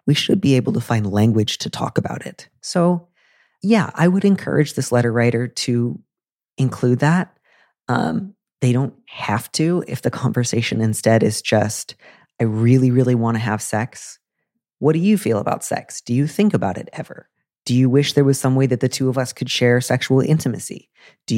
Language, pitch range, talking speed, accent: English, 120-150 Hz, 195 wpm, American